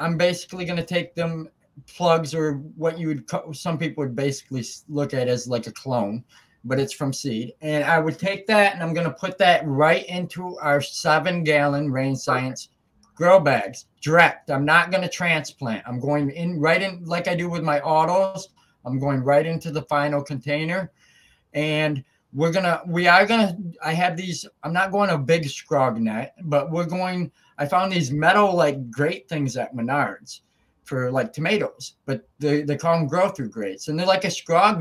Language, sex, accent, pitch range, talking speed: English, male, American, 140-175 Hz, 195 wpm